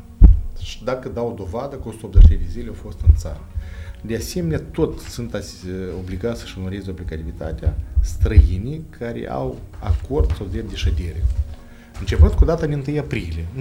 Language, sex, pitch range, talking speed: Romanian, male, 80-115 Hz, 145 wpm